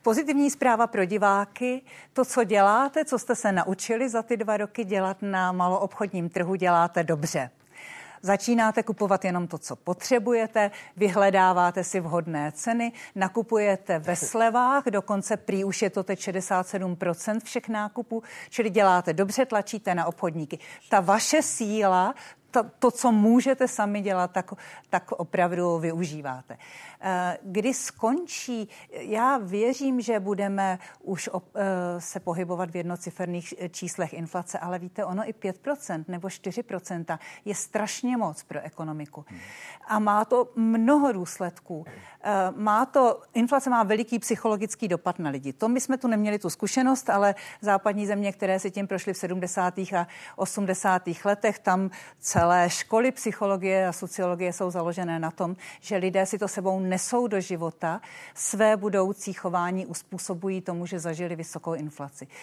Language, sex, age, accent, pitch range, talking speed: Czech, female, 50-69, native, 180-220 Hz, 140 wpm